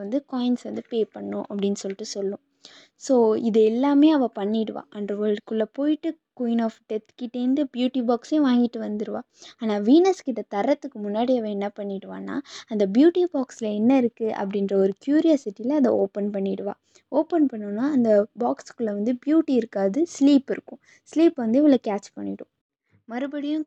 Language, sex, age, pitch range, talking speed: Tamil, female, 20-39, 205-275 Hz, 145 wpm